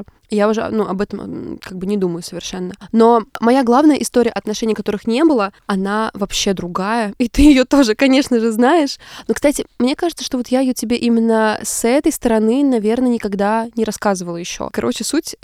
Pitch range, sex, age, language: 200-240 Hz, female, 20-39, Russian